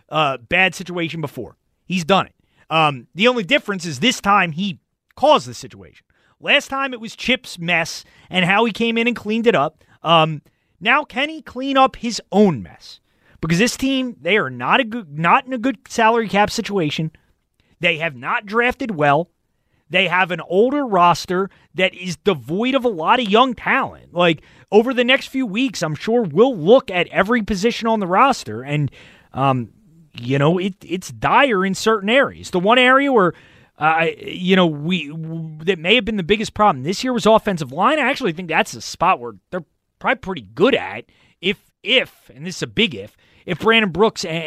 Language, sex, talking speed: English, male, 200 wpm